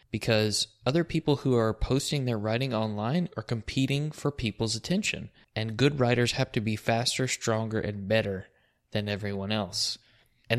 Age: 20-39